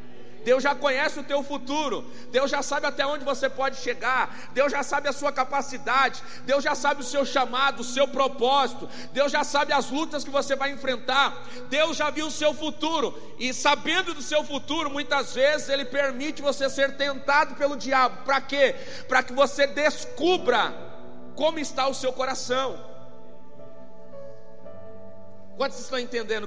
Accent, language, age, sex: Brazilian, Portuguese, 40-59, male